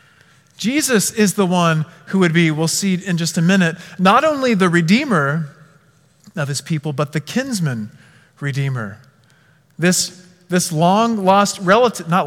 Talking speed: 140 wpm